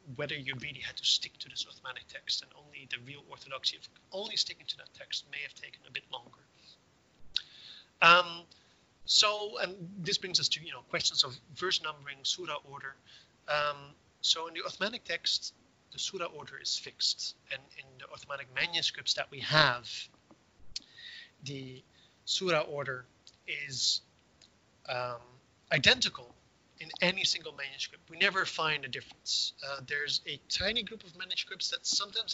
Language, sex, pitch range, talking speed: English, male, 135-175 Hz, 160 wpm